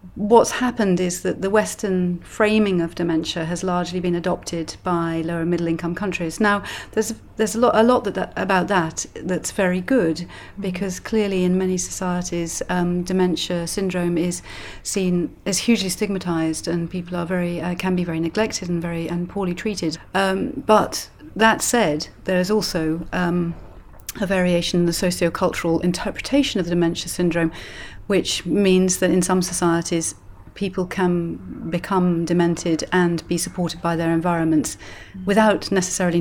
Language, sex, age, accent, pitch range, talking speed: English, female, 40-59, British, 170-190 Hz, 160 wpm